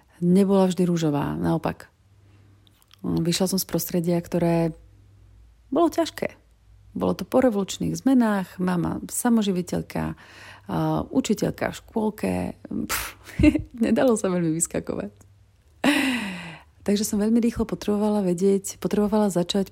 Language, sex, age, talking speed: Slovak, female, 30-49, 105 wpm